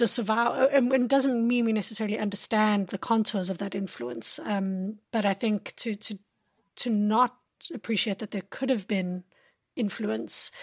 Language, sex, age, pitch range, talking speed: English, female, 30-49, 205-245 Hz, 150 wpm